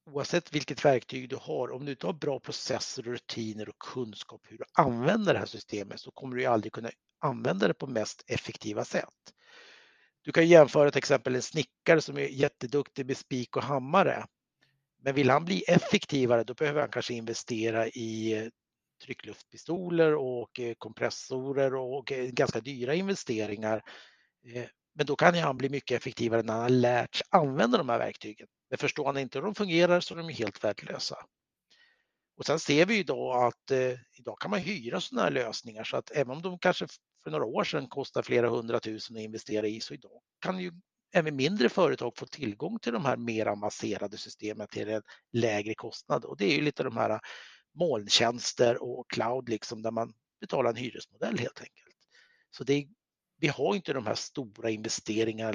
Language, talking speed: Swedish, 185 wpm